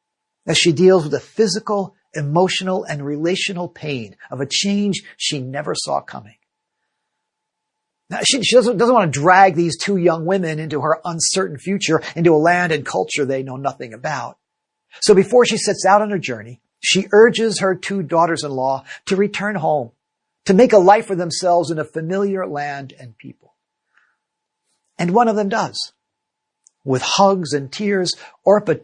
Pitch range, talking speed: 140-190 Hz, 165 wpm